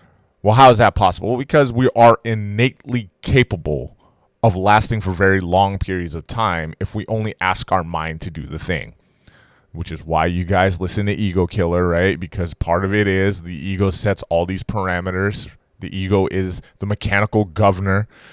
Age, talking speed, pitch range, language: 20-39, 185 wpm, 95-115 Hz, English